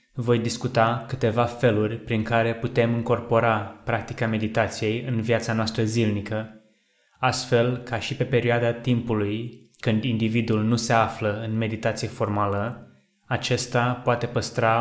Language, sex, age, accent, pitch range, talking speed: Romanian, male, 20-39, native, 110-120 Hz, 125 wpm